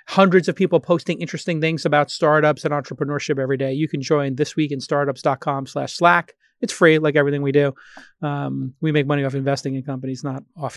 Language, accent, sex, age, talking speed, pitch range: English, American, male, 30-49, 190 wpm, 145-175 Hz